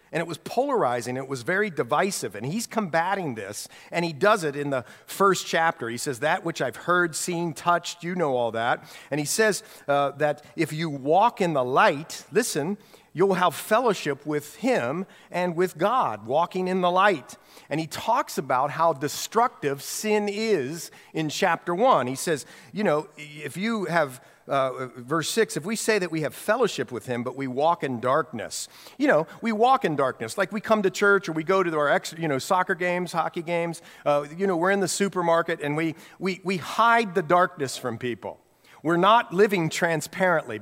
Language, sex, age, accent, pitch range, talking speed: English, male, 50-69, American, 145-200 Hz, 200 wpm